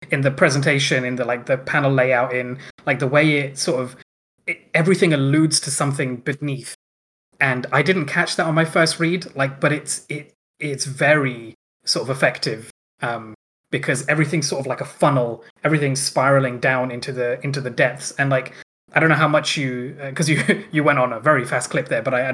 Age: 20-39